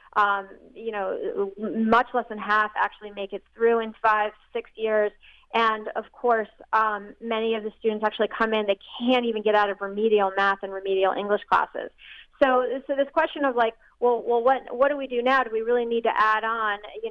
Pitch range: 215-265 Hz